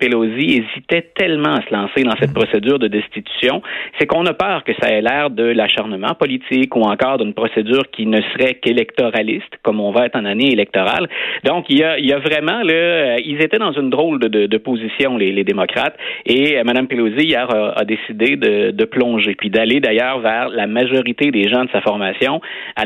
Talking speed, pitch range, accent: 210 wpm, 110-145 Hz, Canadian